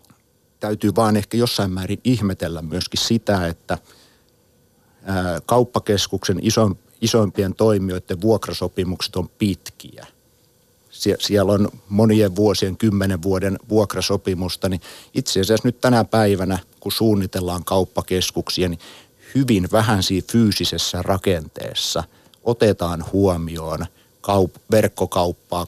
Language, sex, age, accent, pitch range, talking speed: Finnish, male, 60-79, native, 90-110 Hz, 90 wpm